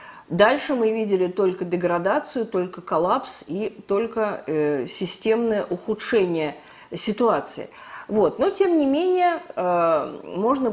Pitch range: 185-245 Hz